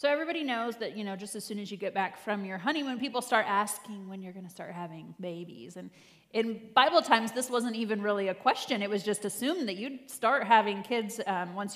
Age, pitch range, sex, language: 30-49, 190-230 Hz, female, English